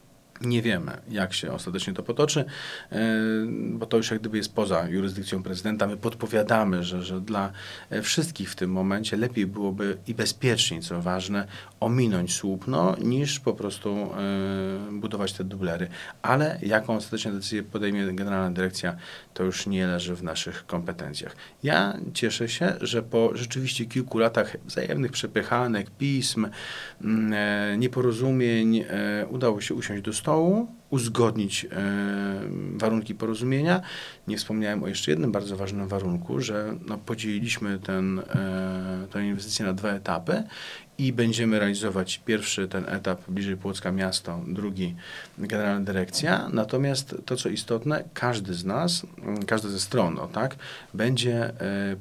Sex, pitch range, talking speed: male, 95-115 Hz, 135 wpm